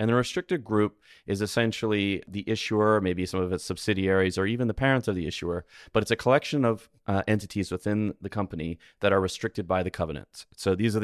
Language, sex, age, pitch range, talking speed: English, male, 30-49, 90-110 Hz, 210 wpm